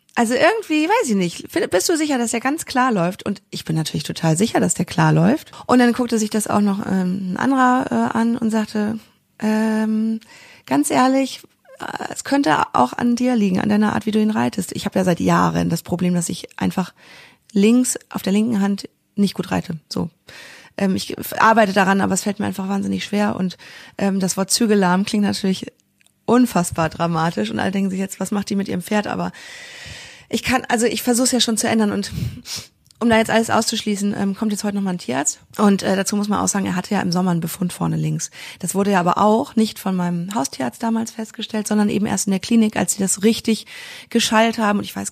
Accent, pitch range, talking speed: German, 190-230 Hz, 225 wpm